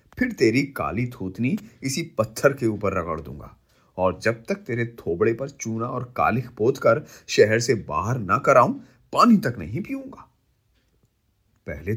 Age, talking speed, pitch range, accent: 30-49, 155 wpm, 95-130 Hz, native